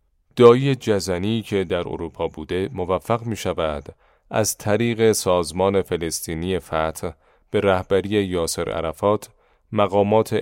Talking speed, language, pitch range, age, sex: 110 wpm, Persian, 85-110 Hz, 30-49, male